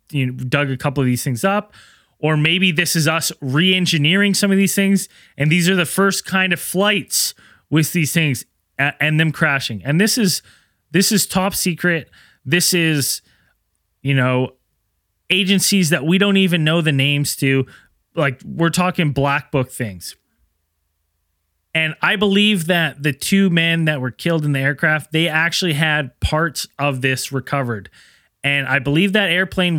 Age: 20-39